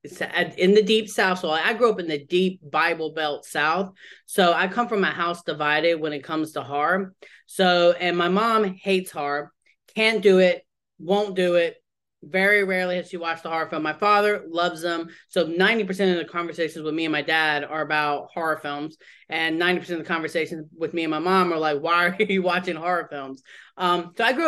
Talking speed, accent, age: 215 wpm, American, 20-39